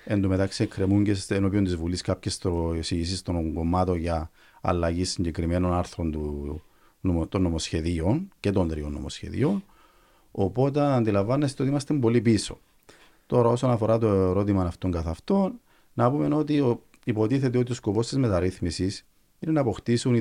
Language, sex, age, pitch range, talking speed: Greek, male, 40-59, 90-110 Hz, 55 wpm